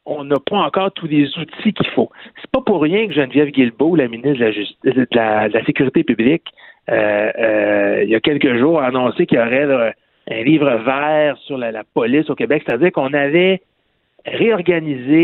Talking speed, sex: 205 wpm, male